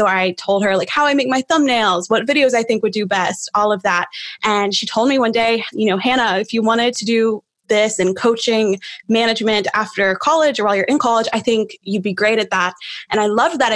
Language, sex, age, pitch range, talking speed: English, female, 20-39, 210-250 Hz, 245 wpm